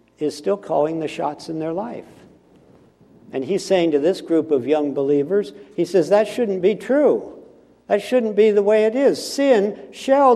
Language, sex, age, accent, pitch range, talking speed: English, male, 60-79, American, 115-195 Hz, 185 wpm